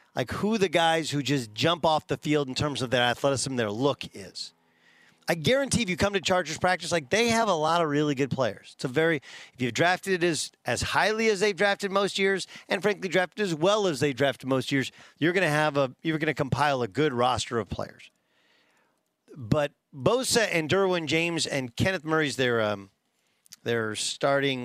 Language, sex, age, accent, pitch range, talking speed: English, male, 40-59, American, 135-175 Hz, 205 wpm